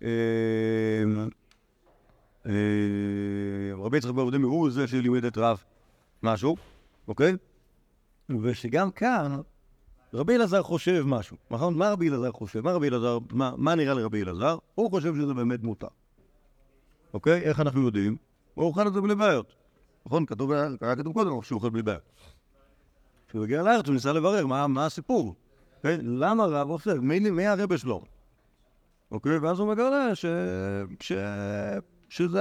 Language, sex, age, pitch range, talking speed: Hebrew, male, 50-69, 110-160 Hz, 125 wpm